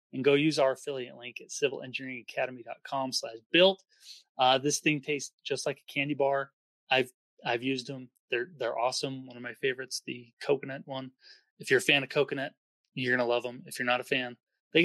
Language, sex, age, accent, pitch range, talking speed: English, male, 30-49, American, 130-165 Hz, 190 wpm